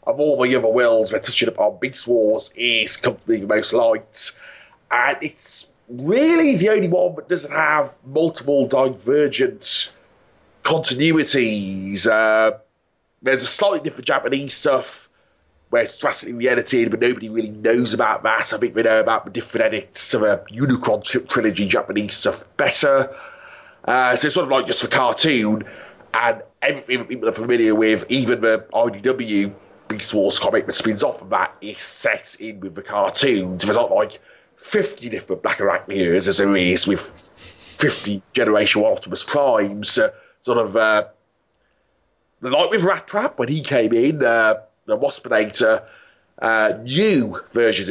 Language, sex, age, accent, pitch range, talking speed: English, male, 30-49, British, 110-175 Hz, 160 wpm